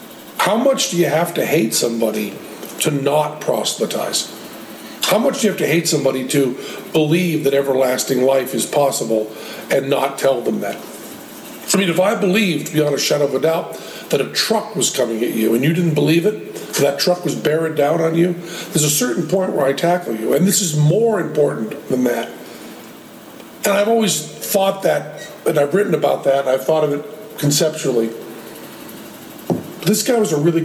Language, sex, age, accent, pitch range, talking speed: English, male, 50-69, American, 135-170 Hz, 190 wpm